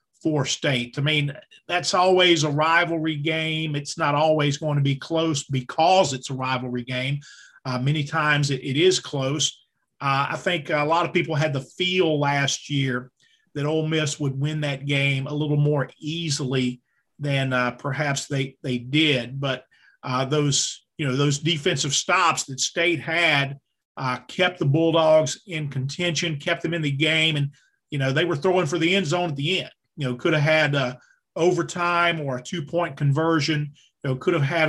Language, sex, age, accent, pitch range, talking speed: English, male, 40-59, American, 140-170 Hz, 185 wpm